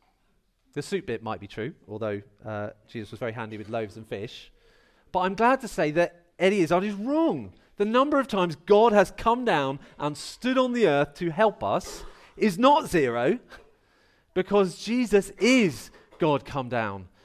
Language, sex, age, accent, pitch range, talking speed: English, male, 40-59, British, 135-205 Hz, 175 wpm